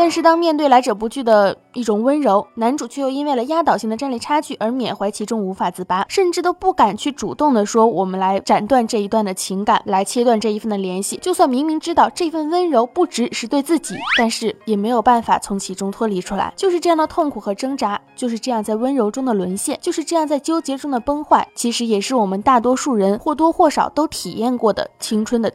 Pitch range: 220-300 Hz